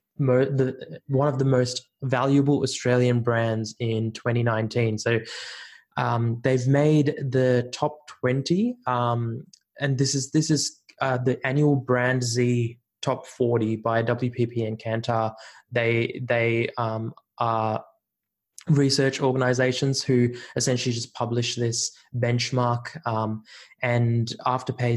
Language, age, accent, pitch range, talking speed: English, 20-39, Australian, 115-130 Hz, 120 wpm